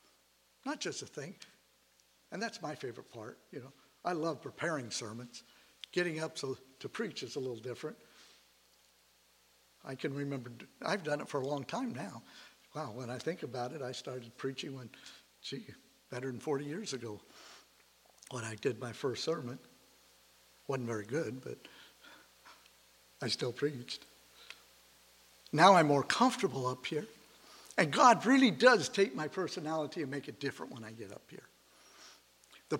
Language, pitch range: English, 115-185 Hz